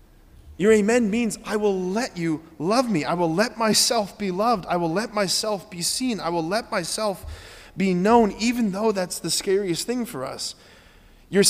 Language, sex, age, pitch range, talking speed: English, male, 20-39, 155-220 Hz, 190 wpm